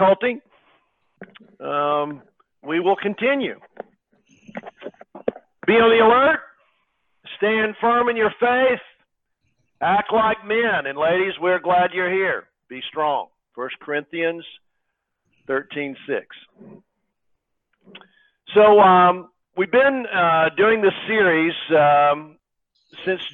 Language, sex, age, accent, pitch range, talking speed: English, male, 50-69, American, 145-195 Hz, 100 wpm